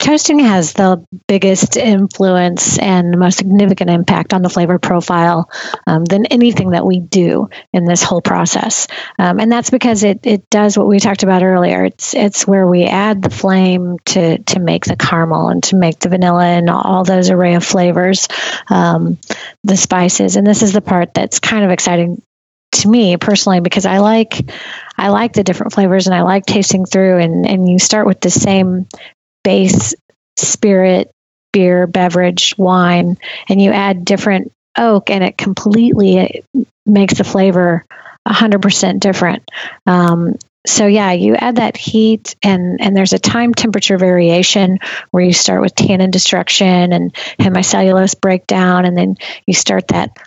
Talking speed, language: 170 wpm, English